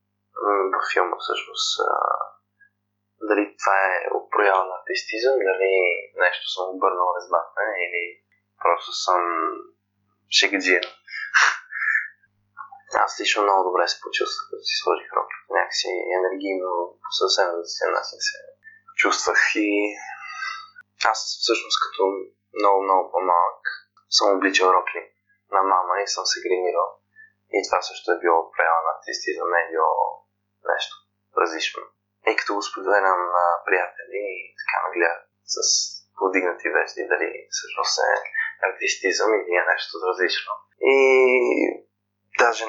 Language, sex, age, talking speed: Bulgarian, male, 20-39, 125 wpm